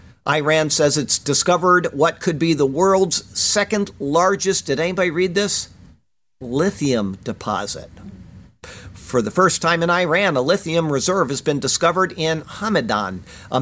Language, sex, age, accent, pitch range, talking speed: English, male, 50-69, American, 130-175 Hz, 140 wpm